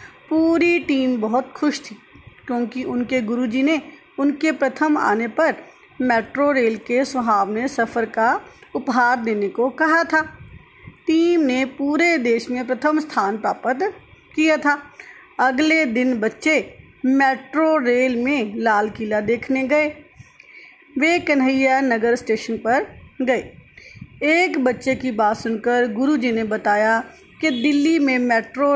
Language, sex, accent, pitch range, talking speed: Hindi, female, native, 245-310 Hz, 130 wpm